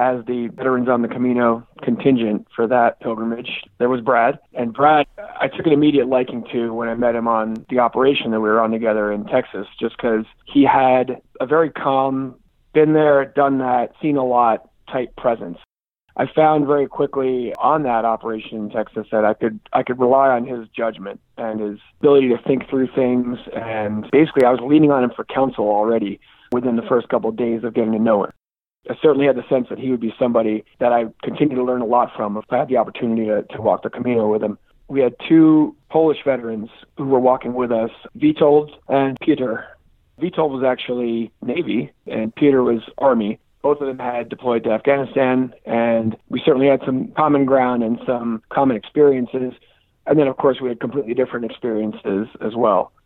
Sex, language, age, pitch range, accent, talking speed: male, English, 30-49, 115-135 Hz, American, 200 wpm